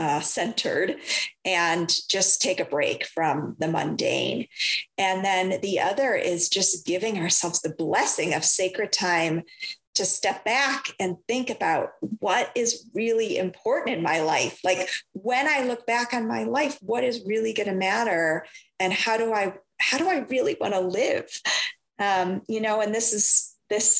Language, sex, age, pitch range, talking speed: English, female, 30-49, 175-235 Hz, 170 wpm